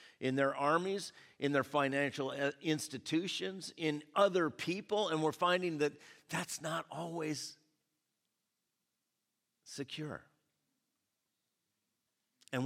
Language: English